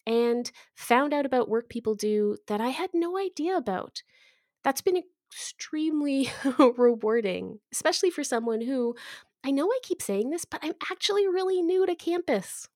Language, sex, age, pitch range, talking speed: English, female, 20-39, 210-305 Hz, 160 wpm